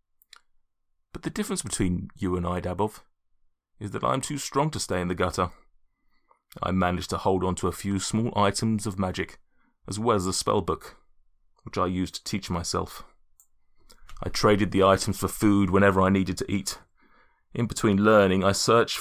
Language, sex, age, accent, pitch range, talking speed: English, male, 30-49, British, 95-105 Hz, 185 wpm